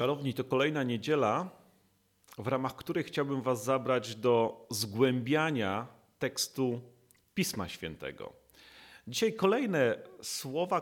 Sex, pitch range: male, 115-170 Hz